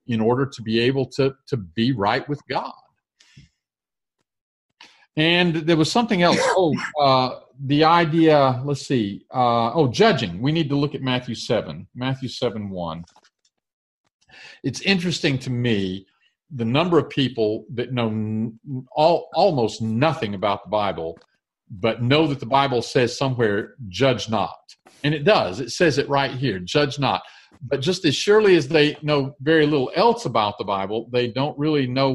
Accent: American